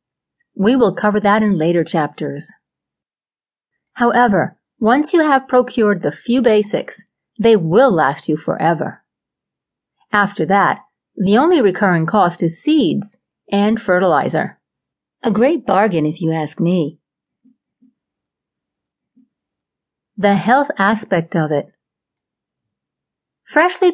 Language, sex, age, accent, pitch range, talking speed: English, female, 50-69, American, 185-250 Hz, 110 wpm